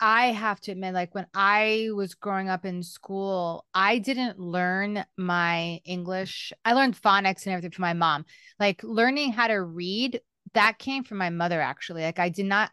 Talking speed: 190 wpm